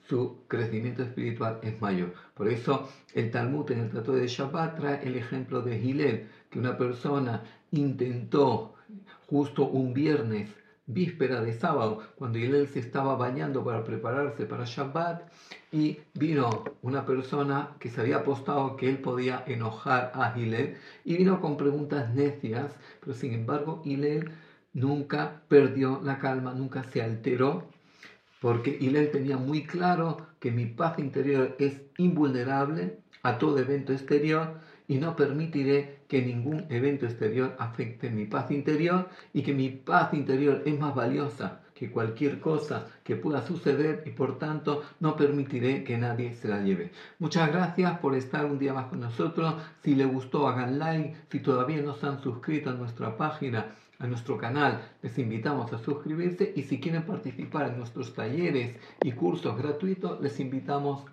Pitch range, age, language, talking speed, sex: 125-150 Hz, 50-69, Greek, 155 wpm, male